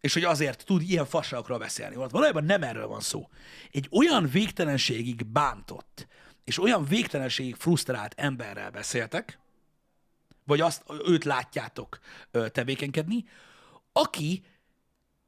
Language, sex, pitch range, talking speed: Hungarian, male, 125-170 Hz, 110 wpm